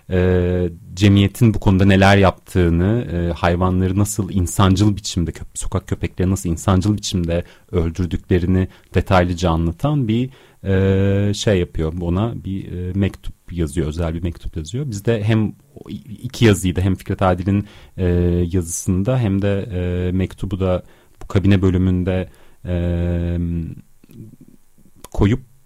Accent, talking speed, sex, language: native, 120 wpm, male, Turkish